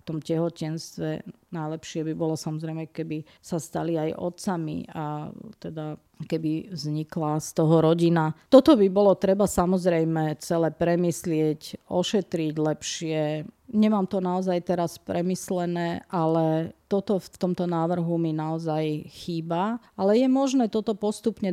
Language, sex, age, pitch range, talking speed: Slovak, female, 40-59, 155-180 Hz, 130 wpm